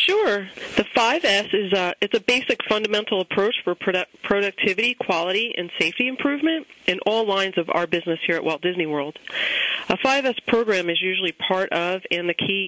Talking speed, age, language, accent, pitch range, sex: 180 wpm, 40-59, English, American, 175-215 Hz, female